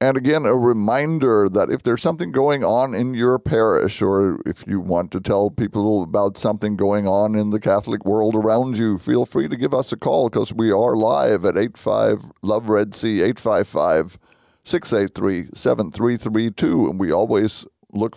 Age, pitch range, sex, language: 50-69, 100-125 Hz, male, English